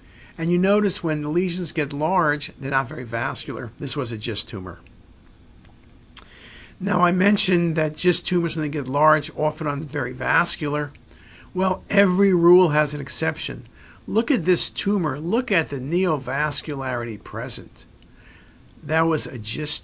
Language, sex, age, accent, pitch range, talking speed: English, male, 50-69, American, 135-175 Hz, 150 wpm